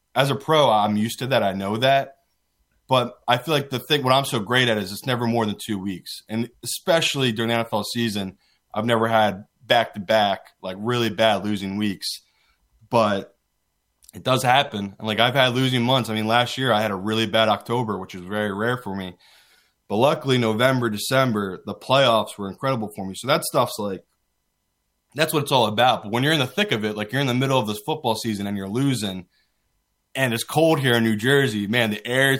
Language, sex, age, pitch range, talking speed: English, male, 20-39, 105-130 Hz, 215 wpm